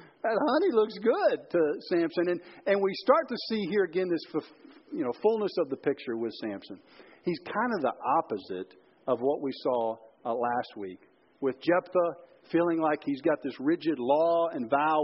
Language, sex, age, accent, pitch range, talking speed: English, male, 50-69, American, 155-210 Hz, 190 wpm